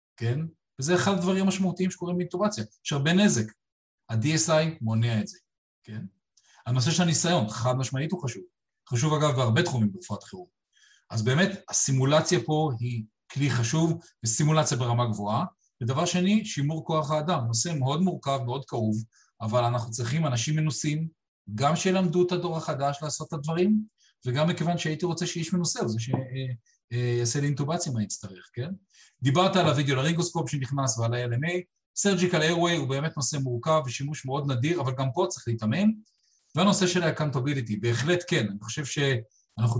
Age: 40-59